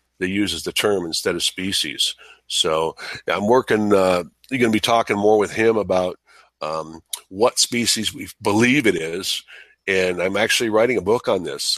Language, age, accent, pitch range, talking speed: English, 50-69, American, 90-110 Hz, 185 wpm